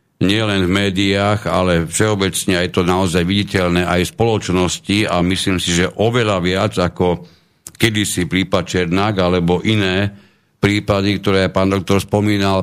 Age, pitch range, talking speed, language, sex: 50-69, 90-105 Hz, 140 wpm, Slovak, male